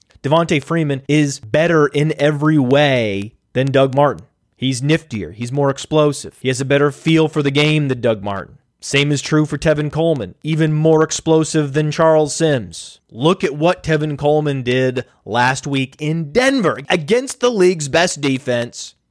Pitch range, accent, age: 130-165 Hz, American, 30-49